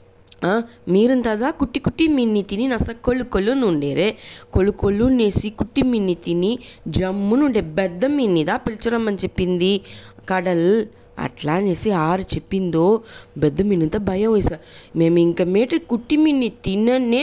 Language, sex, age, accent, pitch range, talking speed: English, female, 20-39, Indian, 165-235 Hz, 100 wpm